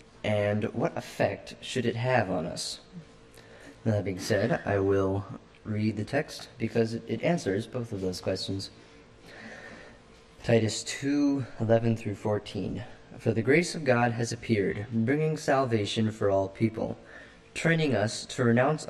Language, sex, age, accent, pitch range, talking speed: English, male, 20-39, American, 105-130 Hz, 135 wpm